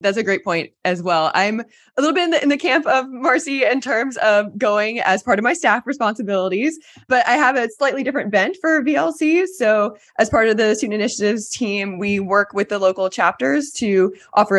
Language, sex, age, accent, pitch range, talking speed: English, female, 20-39, American, 175-240 Hz, 210 wpm